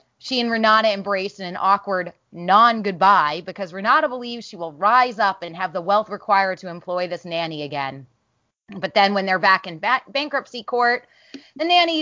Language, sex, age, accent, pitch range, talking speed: English, female, 20-39, American, 180-235 Hz, 175 wpm